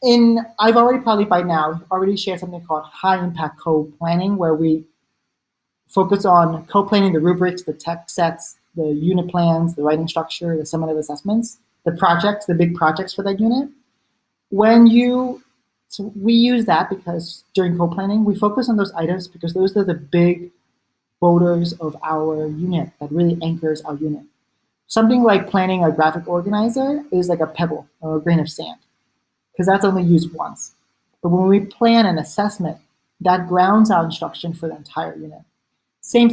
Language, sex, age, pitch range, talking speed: English, male, 30-49, 165-205 Hz, 170 wpm